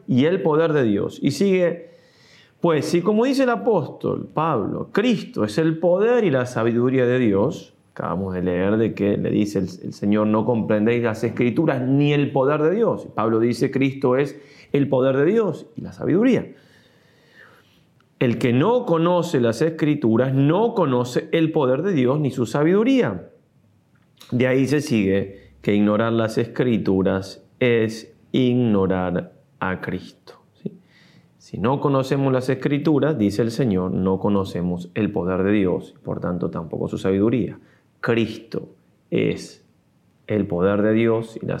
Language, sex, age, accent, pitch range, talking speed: Spanish, male, 30-49, Argentinian, 105-160 Hz, 155 wpm